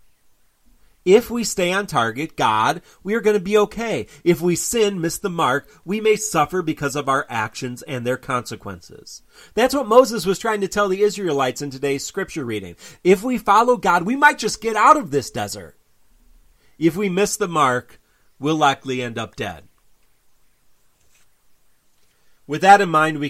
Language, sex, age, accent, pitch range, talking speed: English, male, 40-59, American, 130-200 Hz, 175 wpm